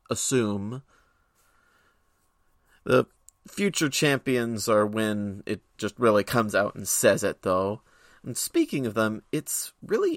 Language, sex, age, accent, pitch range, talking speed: English, male, 30-49, American, 100-130 Hz, 125 wpm